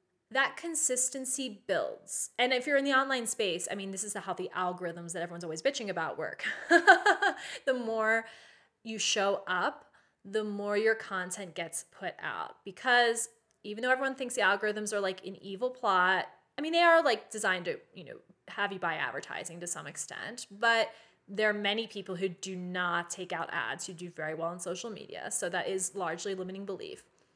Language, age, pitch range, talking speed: English, 20-39, 190-265 Hz, 190 wpm